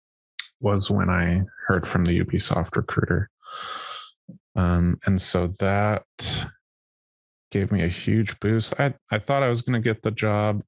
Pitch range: 90-110 Hz